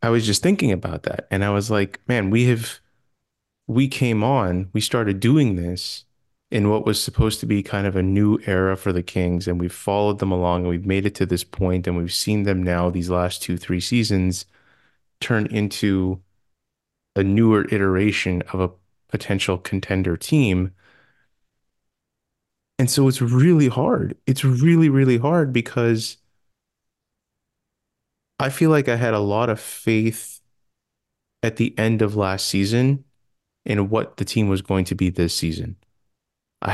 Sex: male